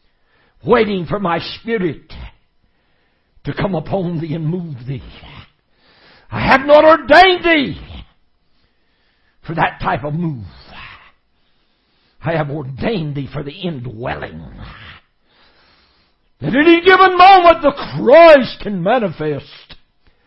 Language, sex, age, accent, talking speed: English, male, 60-79, American, 105 wpm